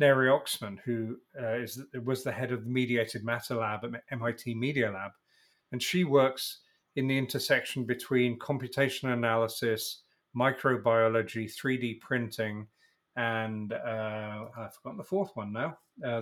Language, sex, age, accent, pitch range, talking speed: English, male, 40-59, British, 115-130 Hz, 145 wpm